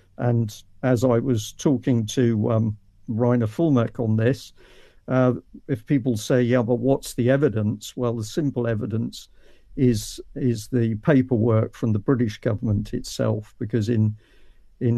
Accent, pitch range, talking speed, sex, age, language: British, 110-130 Hz, 145 wpm, male, 50-69, English